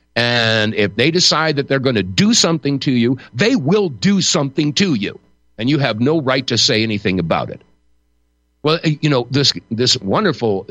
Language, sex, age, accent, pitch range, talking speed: English, male, 50-69, American, 100-155 Hz, 190 wpm